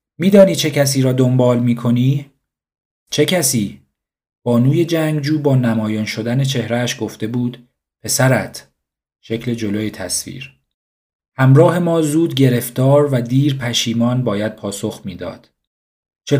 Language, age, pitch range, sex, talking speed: Persian, 40-59, 105-135 Hz, male, 115 wpm